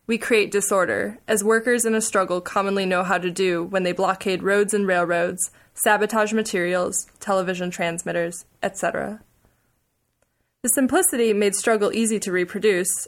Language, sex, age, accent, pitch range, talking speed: English, female, 20-39, American, 190-225 Hz, 140 wpm